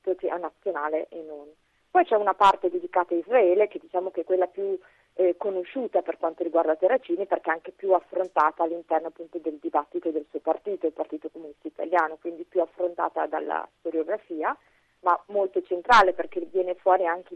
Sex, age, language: female, 30-49, Italian